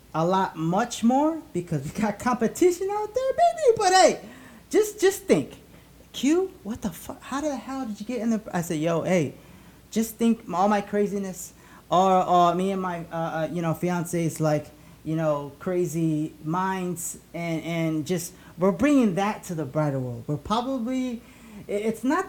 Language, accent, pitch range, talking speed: English, American, 170-255 Hz, 180 wpm